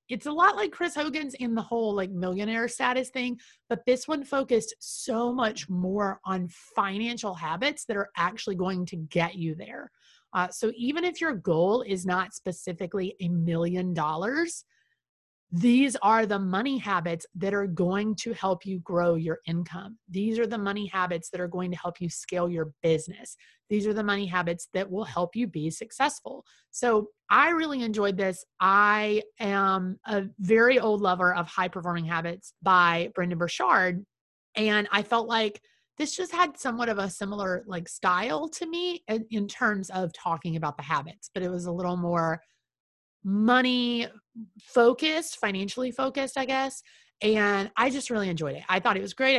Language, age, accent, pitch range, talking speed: English, 30-49, American, 180-240 Hz, 175 wpm